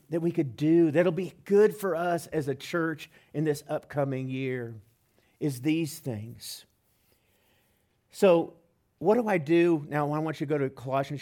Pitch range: 135-185 Hz